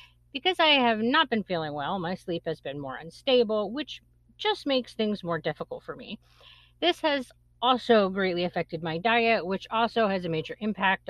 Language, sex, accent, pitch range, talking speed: English, female, American, 160-235 Hz, 185 wpm